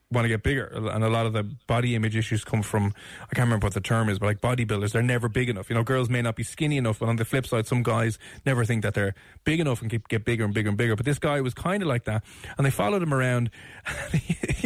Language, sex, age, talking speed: English, male, 20-39, 295 wpm